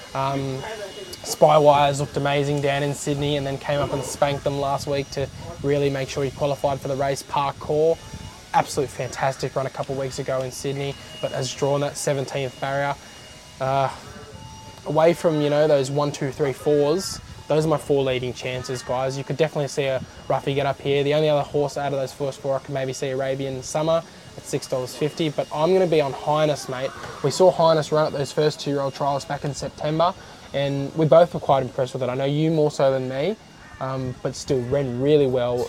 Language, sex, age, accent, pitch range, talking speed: English, male, 10-29, Australian, 135-150 Hz, 215 wpm